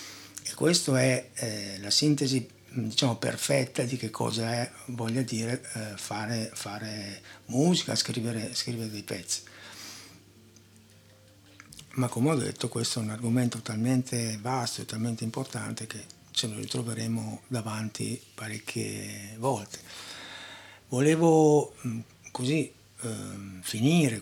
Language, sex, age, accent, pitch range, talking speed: Italian, male, 60-79, native, 110-130 Hz, 110 wpm